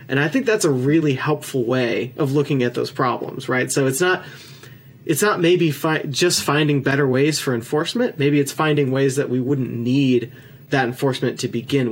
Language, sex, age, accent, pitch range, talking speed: English, male, 30-49, American, 130-160 Hz, 195 wpm